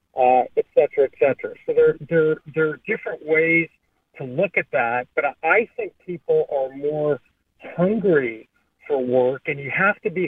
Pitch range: 145-235 Hz